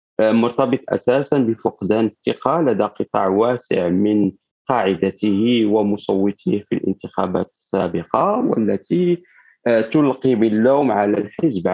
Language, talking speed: Arabic, 90 wpm